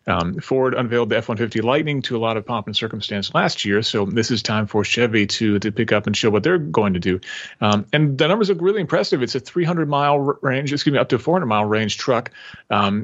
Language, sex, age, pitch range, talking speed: English, male, 40-59, 110-150 Hz, 235 wpm